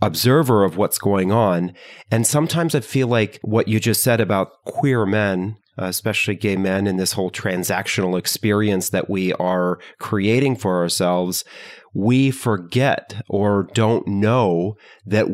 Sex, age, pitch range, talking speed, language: male, 30-49, 95-120 Hz, 145 wpm, English